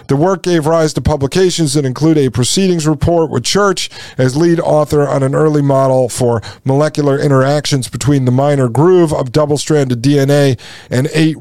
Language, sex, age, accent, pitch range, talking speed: English, male, 40-59, American, 135-165 Hz, 170 wpm